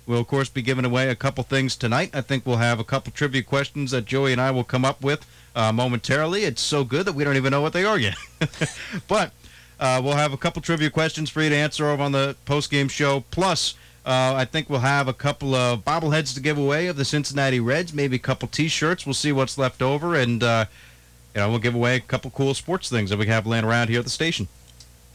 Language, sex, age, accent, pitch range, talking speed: English, male, 30-49, American, 120-145 Hz, 250 wpm